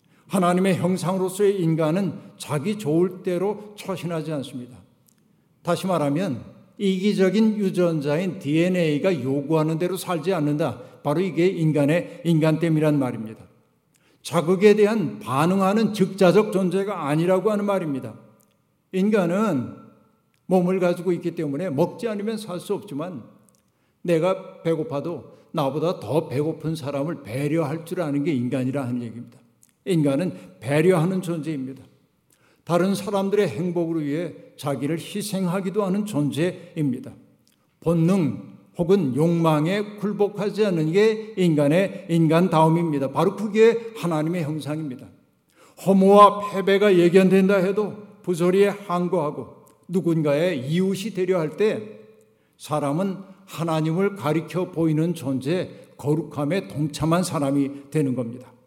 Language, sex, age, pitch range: Korean, male, 60-79, 150-190 Hz